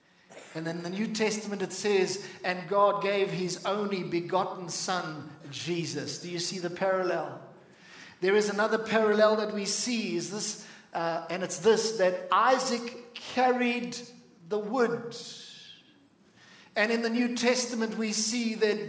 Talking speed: 145 wpm